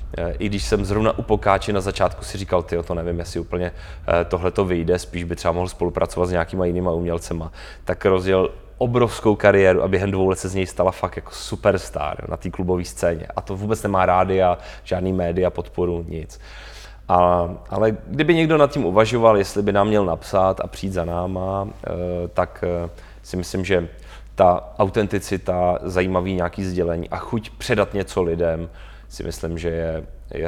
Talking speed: 180 wpm